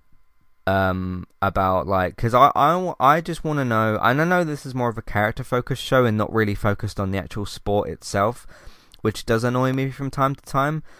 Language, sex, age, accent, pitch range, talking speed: English, male, 20-39, British, 95-125 Hz, 215 wpm